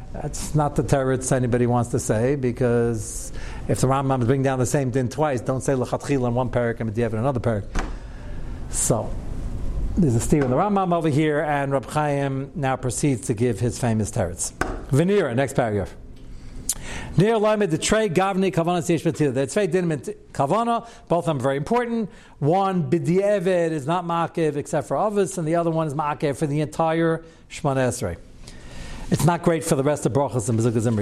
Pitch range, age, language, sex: 125-180 Hz, 60-79, English, male